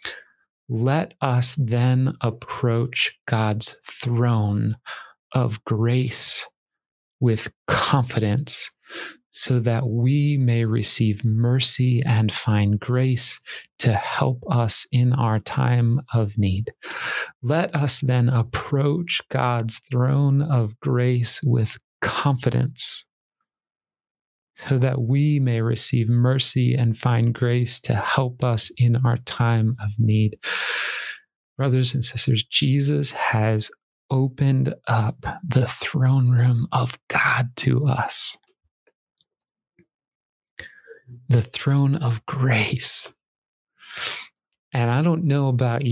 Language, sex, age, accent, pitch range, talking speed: English, male, 40-59, American, 115-135 Hz, 100 wpm